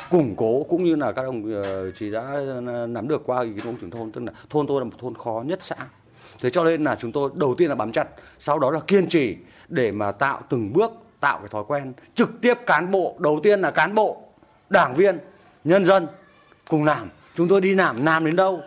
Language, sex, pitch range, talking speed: Vietnamese, male, 130-190 Hz, 235 wpm